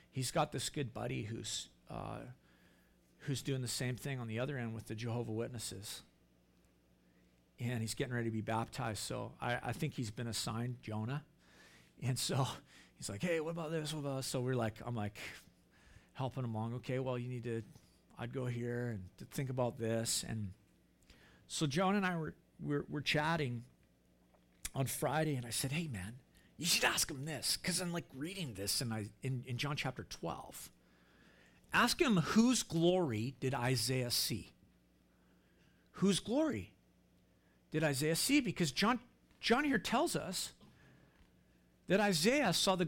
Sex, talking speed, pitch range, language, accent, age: male, 170 wpm, 110-155 Hz, English, American, 50-69